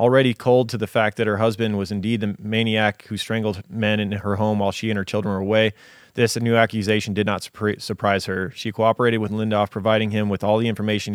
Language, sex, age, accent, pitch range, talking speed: English, male, 20-39, American, 100-115 Hz, 225 wpm